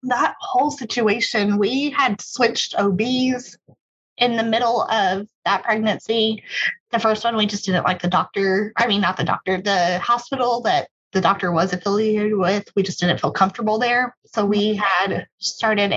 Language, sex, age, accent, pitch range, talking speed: English, female, 20-39, American, 190-230 Hz, 170 wpm